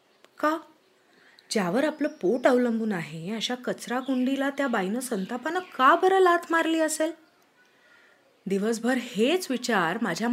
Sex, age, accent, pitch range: female, 30-49, native, 205-290 Hz